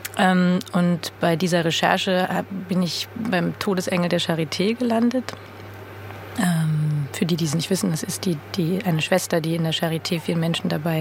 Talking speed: 175 wpm